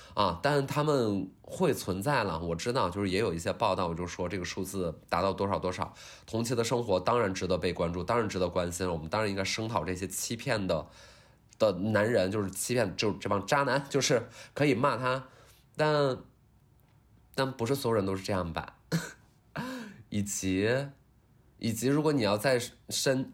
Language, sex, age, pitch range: Chinese, male, 20-39, 90-120 Hz